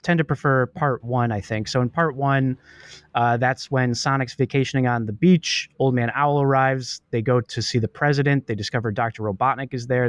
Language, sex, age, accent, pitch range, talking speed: English, male, 20-39, American, 110-130 Hz, 210 wpm